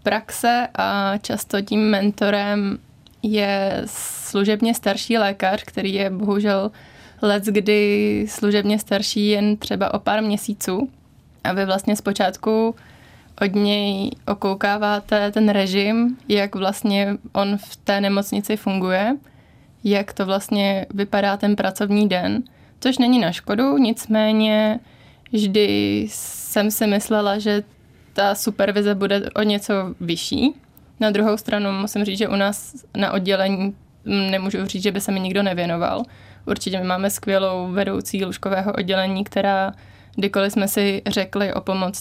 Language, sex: Czech, female